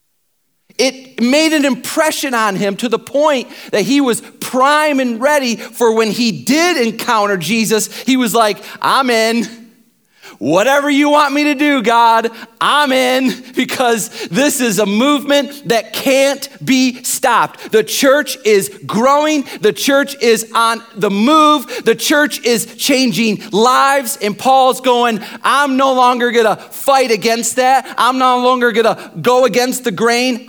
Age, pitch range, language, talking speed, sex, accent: 40-59, 175-260 Hz, English, 150 wpm, male, American